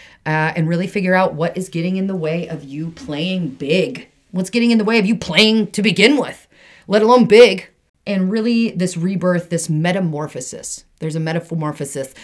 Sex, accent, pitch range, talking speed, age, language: female, American, 155-225 Hz, 185 wpm, 30-49, English